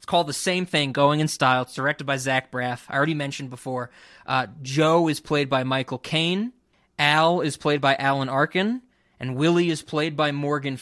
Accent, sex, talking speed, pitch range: American, male, 200 wpm, 140-190 Hz